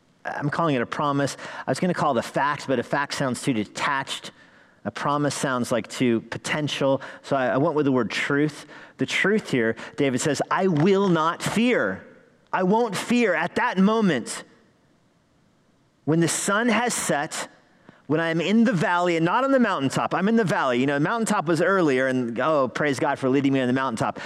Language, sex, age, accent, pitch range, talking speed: English, male, 40-59, American, 135-175 Hz, 205 wpm